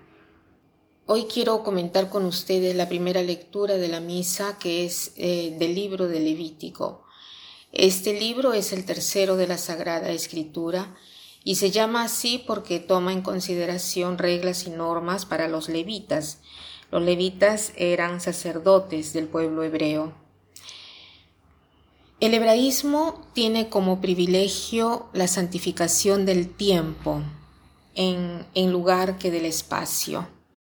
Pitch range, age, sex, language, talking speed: 165-190 Hz, 40-59, female, Spanish, 125 wpm